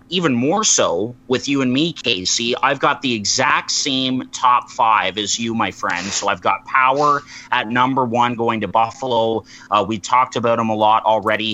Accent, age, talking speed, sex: American, 30-49, 190 wpm, male